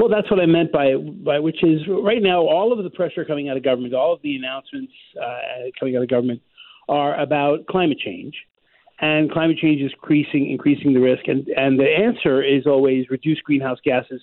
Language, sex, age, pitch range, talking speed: English, male, 50-69, 125-155 Hz, 205 wpm